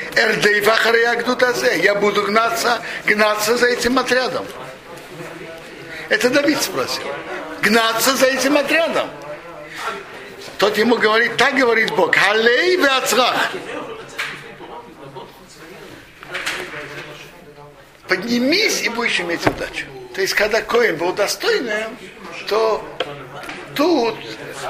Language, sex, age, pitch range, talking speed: Russian, male, 60-79, 175-250 Hz, 80 wpm